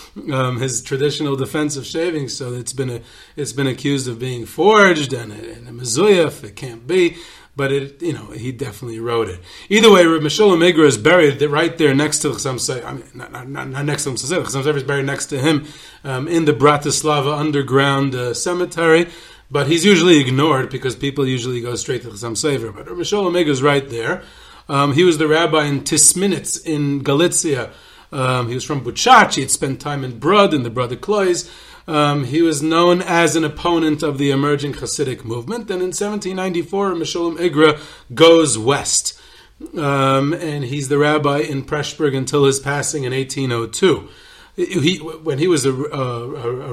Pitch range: 130-165 Hz